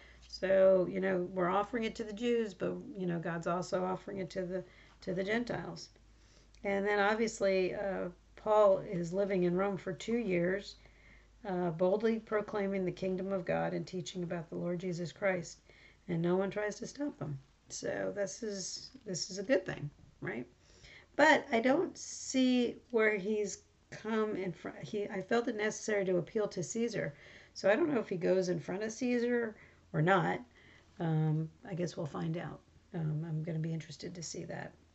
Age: 40-59